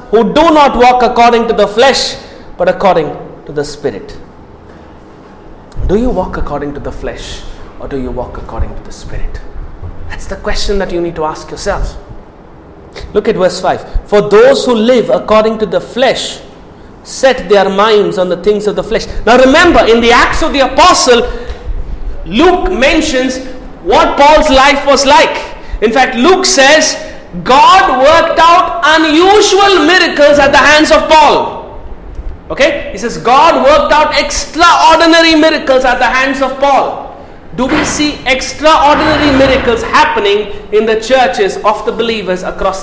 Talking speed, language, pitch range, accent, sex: 160 wpm, English, 205-300 Hz, Indian, male